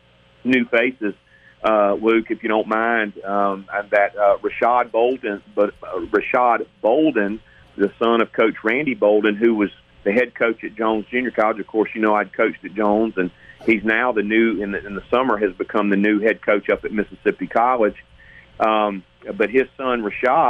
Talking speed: 195 wpm